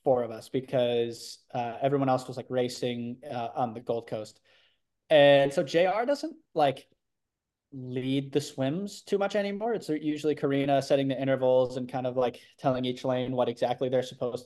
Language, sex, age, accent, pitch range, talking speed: English, male, 20-39, American, 125-140 Hz, 180 wpm